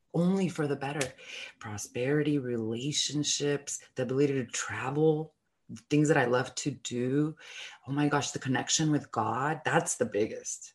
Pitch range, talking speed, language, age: 120-145 Hz, 145 wpm, English, 20-39